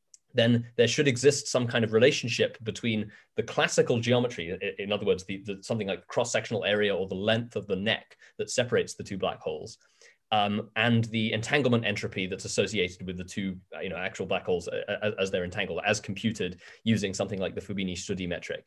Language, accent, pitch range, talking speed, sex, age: English, British, 105-135 Hz, 200 wpm, male, 20-39